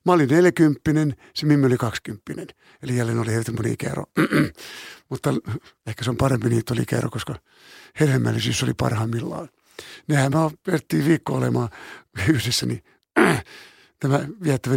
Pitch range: 125-165 Hz